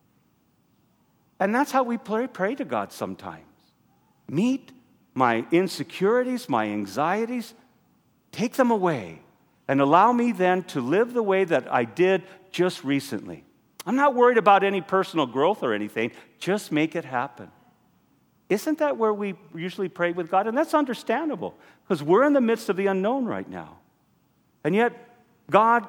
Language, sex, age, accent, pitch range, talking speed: English, male, 50-69, American, 145-230 Hz, 155 wpm